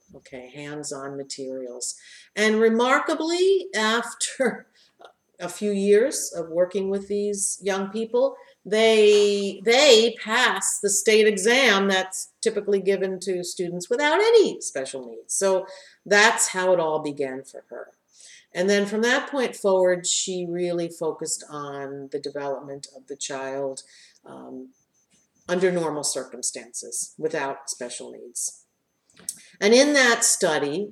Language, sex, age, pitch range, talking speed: English, female, 50-69, 145-215 Hz, 125 wpm